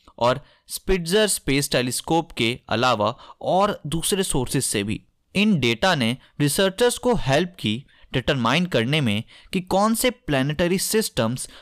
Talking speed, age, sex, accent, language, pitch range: 135 wpm, 20-39, male, native, Hindi, 125-185 Hz